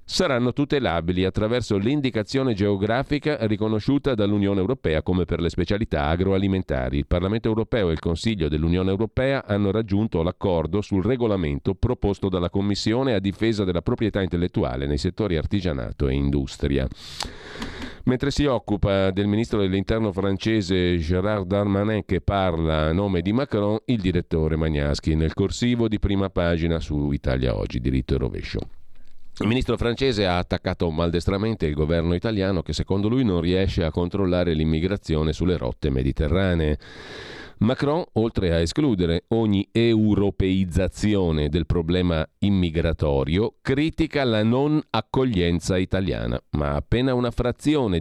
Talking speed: 130 wpm